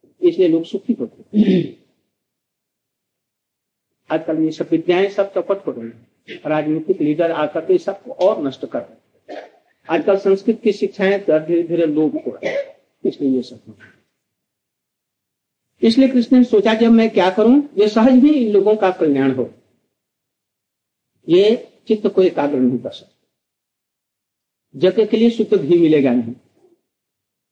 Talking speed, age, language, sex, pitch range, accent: 130 wpm, 60-79, Hindi, male, 150-225 Hz, native